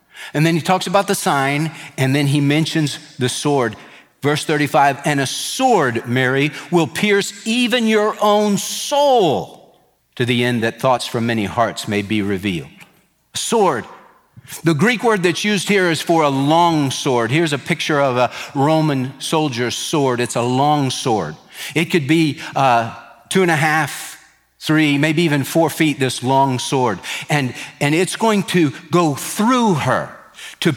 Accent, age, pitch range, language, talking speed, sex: American, 50-69, 145-200 Hz, English, 165 wpm, male